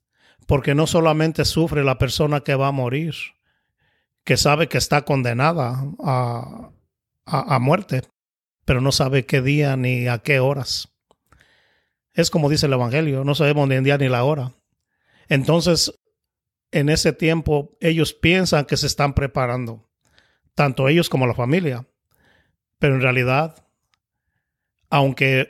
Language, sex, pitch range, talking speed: English, male, 125-150 Hz, 140 wpm